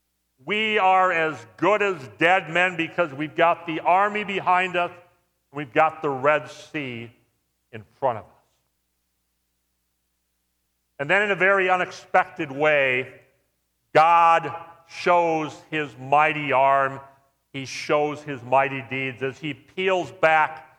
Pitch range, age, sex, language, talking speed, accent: 125-185 Hz, 50-69, male, English, 130 wpm, American